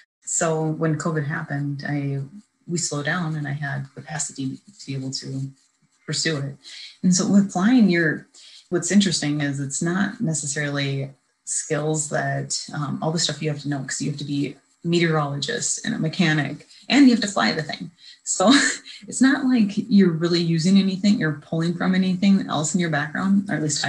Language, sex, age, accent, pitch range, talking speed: English, female, 30-49, American, 145-185 Hz, 190 wpm